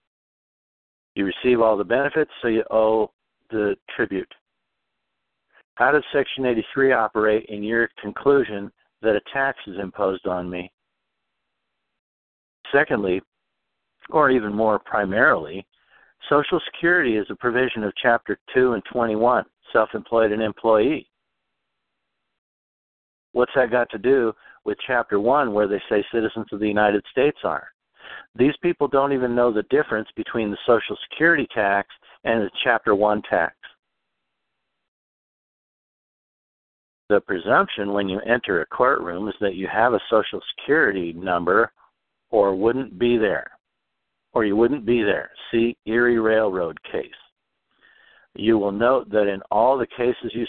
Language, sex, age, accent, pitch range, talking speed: English, male, 60-79, American, 100-120 Hz, 135 wpm